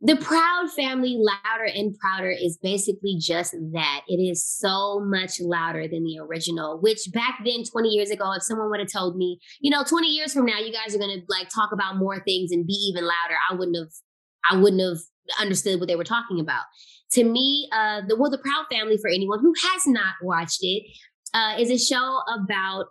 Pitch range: 180-215 Hz